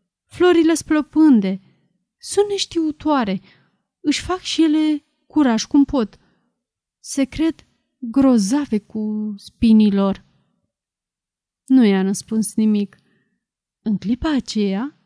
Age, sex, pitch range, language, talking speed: 30-49, female, 210-275 Hz, Romanian, 95 wpm